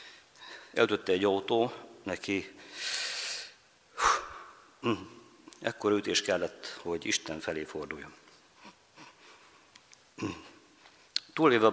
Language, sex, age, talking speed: Hungarian, male, 50-69, 65 wpm